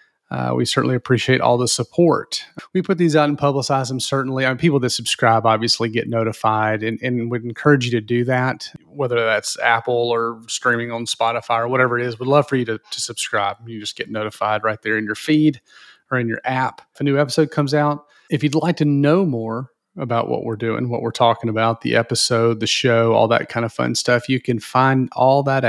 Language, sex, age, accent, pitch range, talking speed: English, male, 30-49, American, 115-145 Hz, 220 wpm